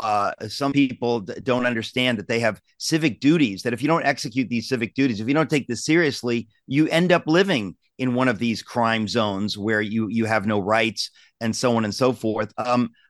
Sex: male